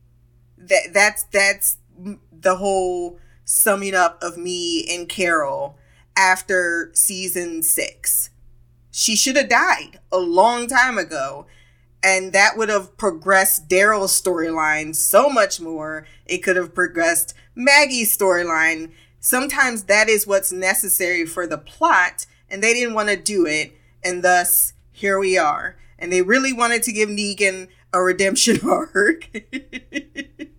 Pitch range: 160-215 Hz